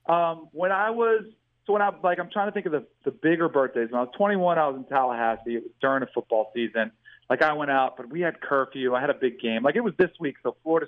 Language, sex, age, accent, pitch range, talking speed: English, male, 40-59, American, 125-165 Hz, 280 wpm